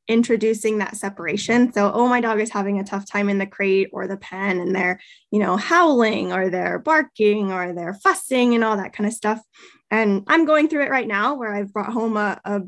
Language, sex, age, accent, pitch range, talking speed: English, female, 10-29, American, 210-270 Hz, 225 wpm